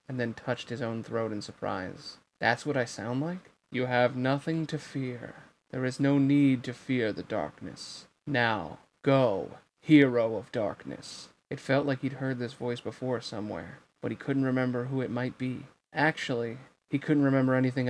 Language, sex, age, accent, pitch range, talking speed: English, male, 30-49, American, 115-135 Hz, 180 wpm